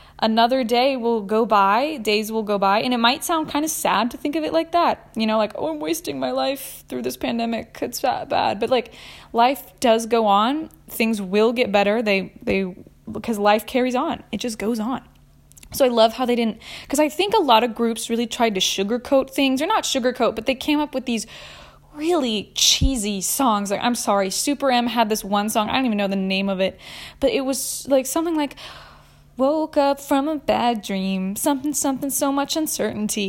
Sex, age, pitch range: female, 10-29, 215-280 Hz